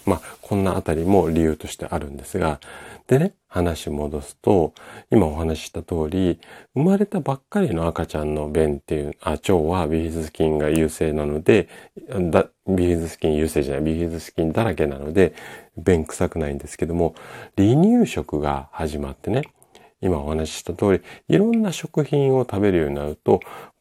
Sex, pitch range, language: male, 75-110 Hz, Japanese